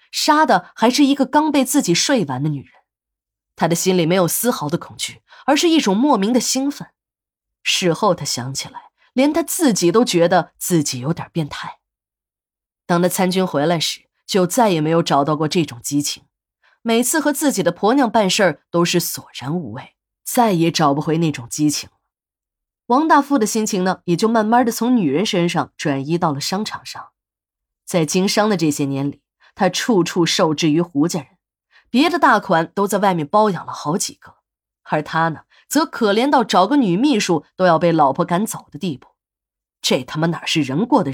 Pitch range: 155-235 Hz